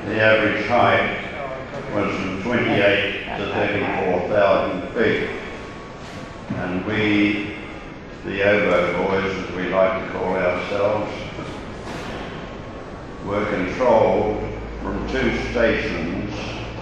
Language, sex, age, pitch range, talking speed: English, male, 60-79, 90-105 Hz, 90 wpm